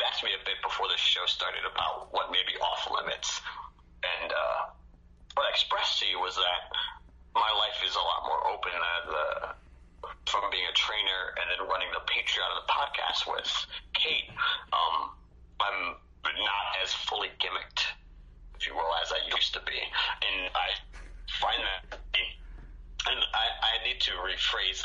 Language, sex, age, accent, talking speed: English, male, 30-49, American, 165 wpm